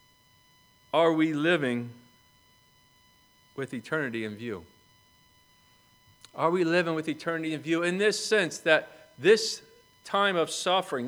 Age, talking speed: 40-59, 120 wpm